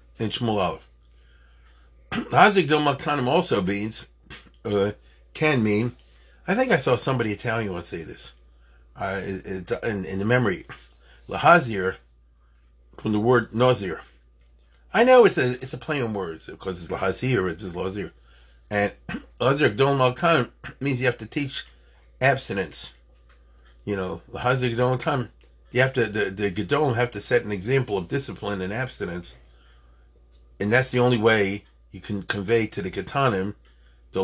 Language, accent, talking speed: English, American, 145 wpm